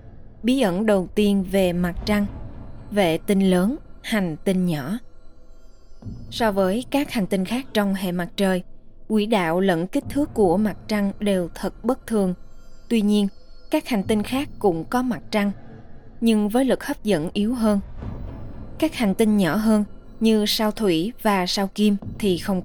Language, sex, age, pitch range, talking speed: Vietnamese, female, 20-39, 190-225 Hz, 170 wpm